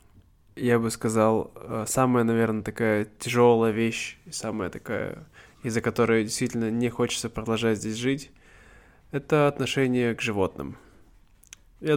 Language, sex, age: Russian, male, 20-39